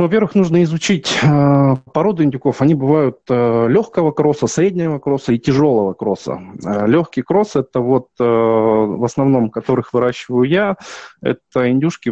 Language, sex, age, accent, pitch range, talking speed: Russian, male, 20-39, native, 115-150 Hz, 130 wpm